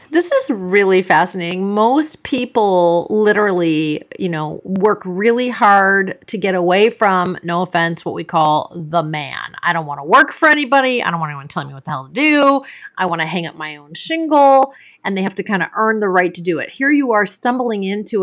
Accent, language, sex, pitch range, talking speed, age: American, English, female, 170-215 Hz, 215 wpm, 30-49